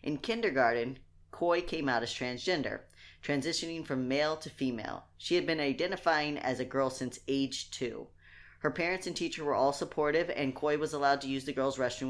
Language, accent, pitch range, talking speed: English, American, 125-150 Hz, 190 wpm